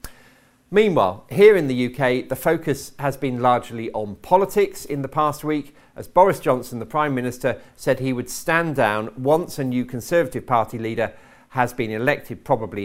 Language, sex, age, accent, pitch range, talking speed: English, male, 50-69, British, 115-145 Hz, 175 wpm